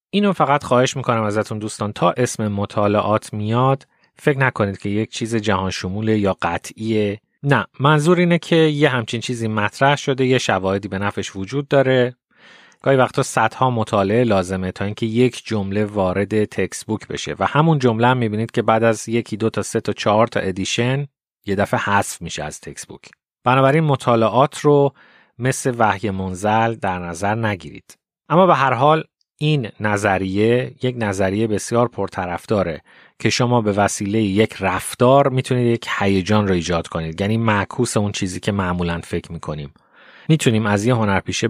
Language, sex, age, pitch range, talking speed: Persian, male, 30-49, 100-125 Hz, 160 wpm